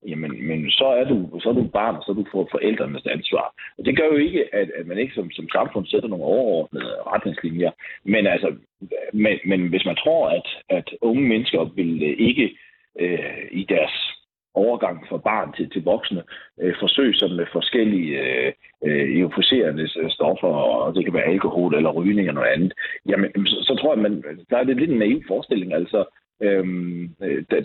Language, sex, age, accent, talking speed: Danish, male, 40-59, native, 190 wpm